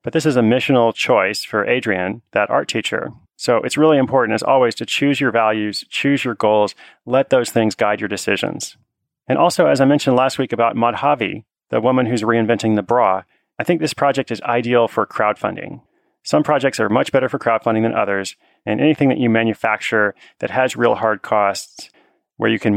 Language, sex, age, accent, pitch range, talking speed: English, male, 30-49, American, 105-130 Hz, 200 wpm